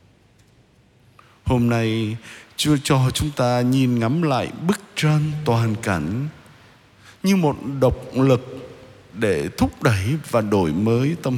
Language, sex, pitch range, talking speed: Vietnamese, male, 115-150 Hz, 125 wpm